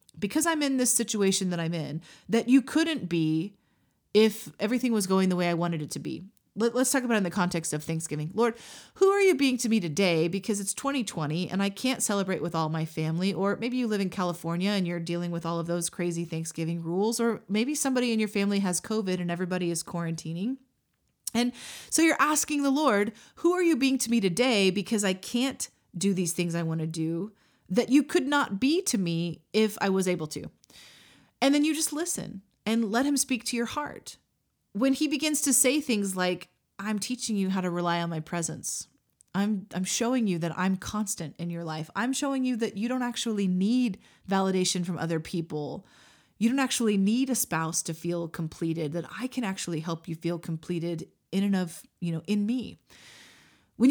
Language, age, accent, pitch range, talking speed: English, 30-49, American, 170-245 Hz, 210 wpm